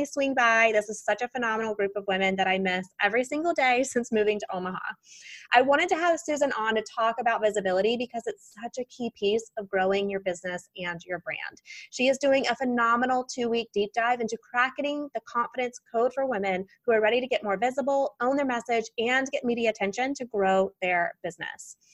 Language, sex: English, female